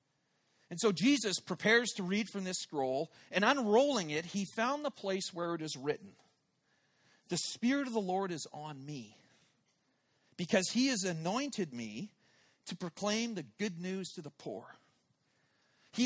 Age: 40-59